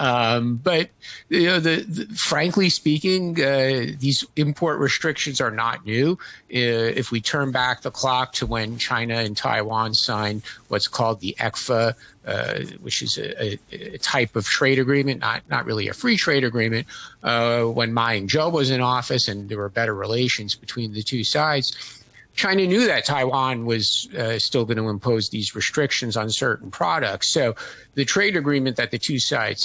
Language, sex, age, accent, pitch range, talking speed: English, male, 50-69, American, 115-145 Hz, 180 wpm